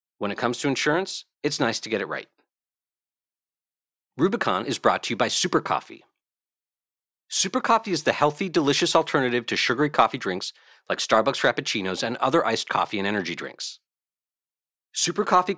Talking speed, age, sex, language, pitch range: 160 wpm, 40-59, male, English, 120-165 Hz